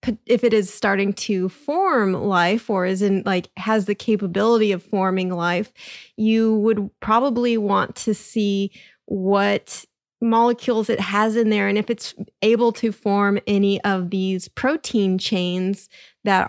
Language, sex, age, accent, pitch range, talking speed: English, female, 20-39, American, 190-225 Hz, 150 wpm